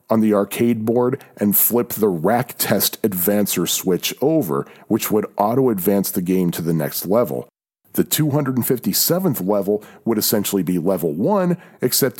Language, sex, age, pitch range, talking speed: English, male, 40-59, 100-140 Hz, 150 wpm